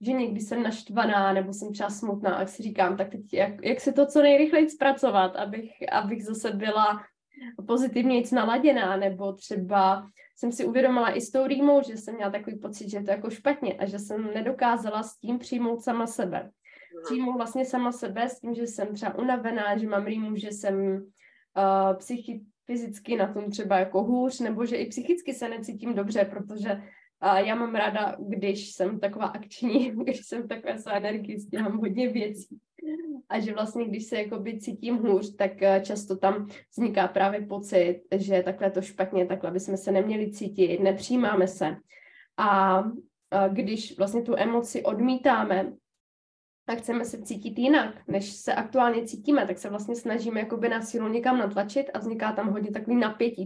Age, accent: 20-39, native